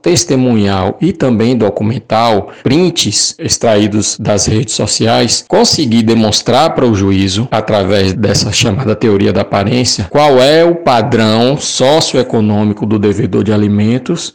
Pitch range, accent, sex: 105-135 Hz, Brazilian, male